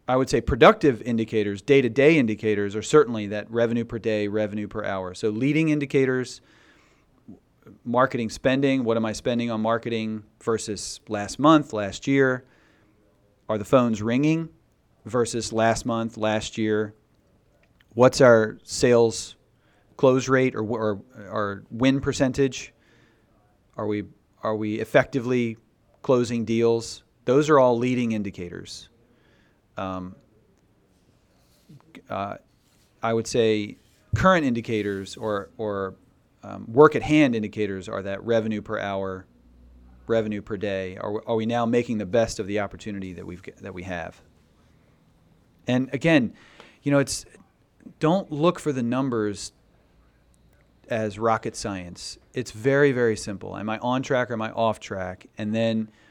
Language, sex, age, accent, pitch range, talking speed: English, male, 40-59, American, 105-125 Hz, 135 wpm